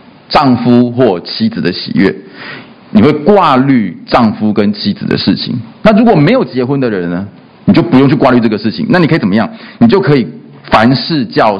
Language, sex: Chinese, male